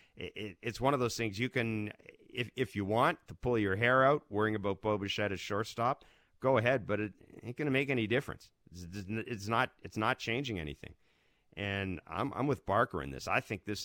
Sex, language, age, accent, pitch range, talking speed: male, English, 40-59, American, 95-120 Hz, 195 wpm